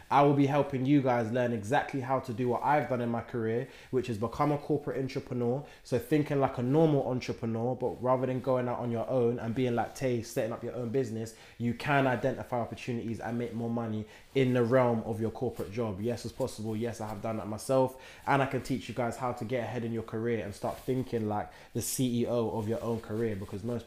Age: 20-39